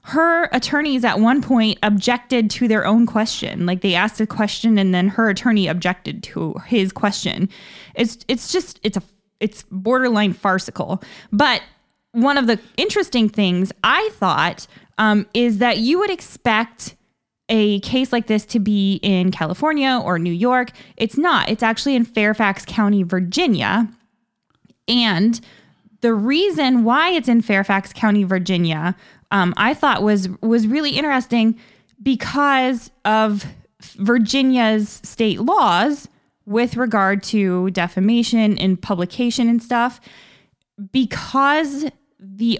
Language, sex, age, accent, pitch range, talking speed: English, female, 20-39, American, 195-240 Hz, 135 wpm